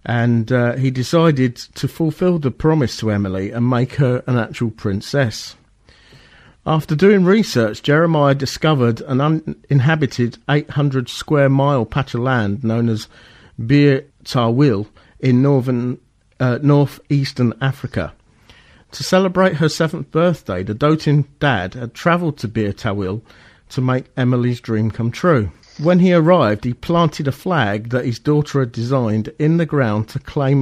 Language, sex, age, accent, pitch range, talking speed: English, male, 50-69, British, 115-150 Hz, 140 wpm